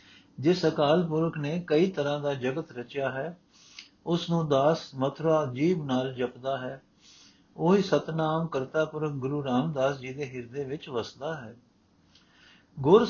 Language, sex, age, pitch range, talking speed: Punjabi, male, 60-79, 145-185 Hz, 140 wpm